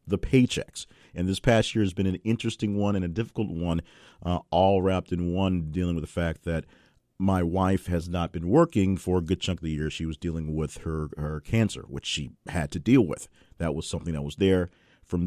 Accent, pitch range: American, 80-95 Hz